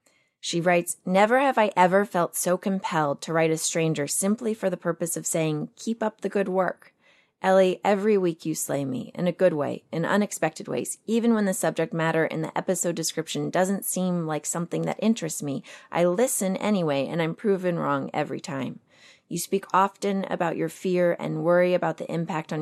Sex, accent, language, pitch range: female, American, English, 160-200 Hz